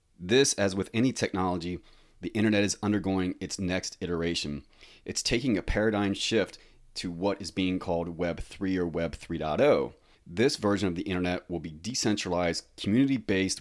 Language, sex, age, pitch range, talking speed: English, male, 30-49, 85-100 Hz, 155 wpm